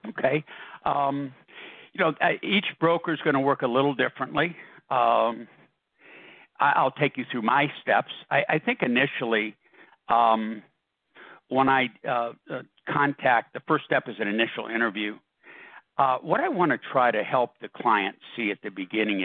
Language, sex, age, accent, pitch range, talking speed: English, male, 60-79, American, 115-145 Hz, 155 wpm